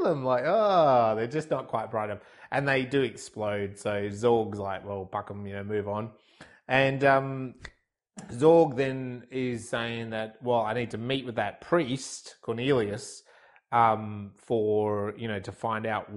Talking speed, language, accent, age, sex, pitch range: 170 wpm, English, Australian, 30-49, male, 105-130 Hz